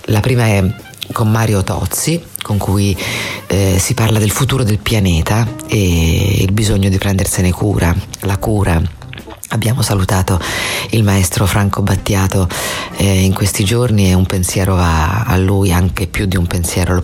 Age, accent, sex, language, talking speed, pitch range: 40-59, native, female, Italian, 160 wpm, 95-110 Hz